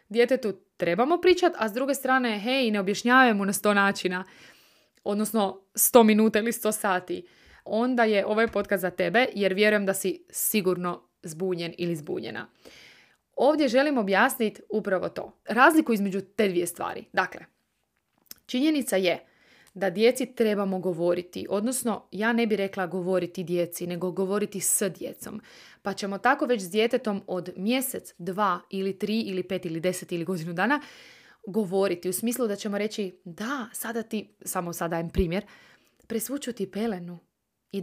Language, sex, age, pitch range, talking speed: Croatian, female, 20-39, 185-220 Hz, 150 wpm